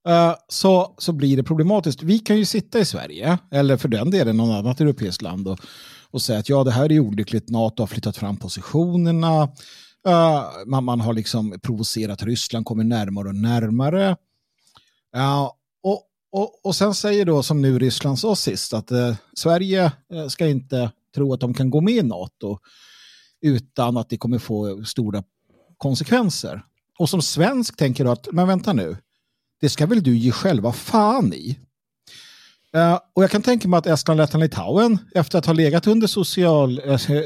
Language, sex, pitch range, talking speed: Swedish, male, 125-185 Hz, 180 wpm